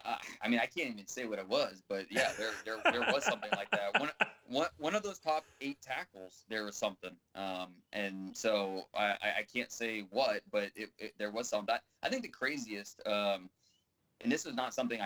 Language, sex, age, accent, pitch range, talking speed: English, male, 20-39, American, 95-115 Hz, 215 wpm